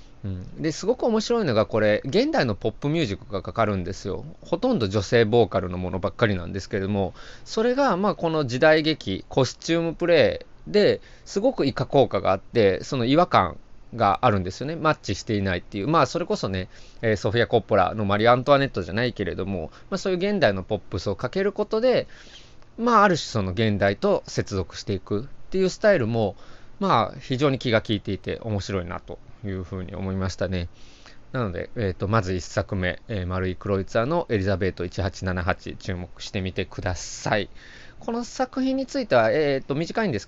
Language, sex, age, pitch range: Japanese, male, 20-39, 100-145 Hz